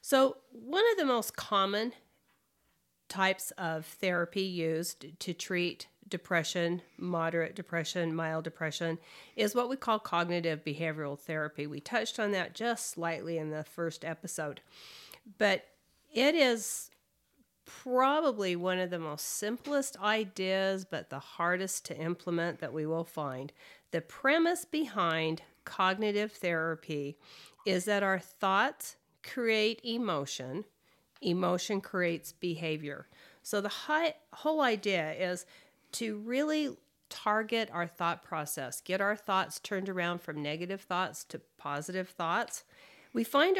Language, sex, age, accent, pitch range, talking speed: English, female, 40-59, American, 165-220 Hz, 125 wpm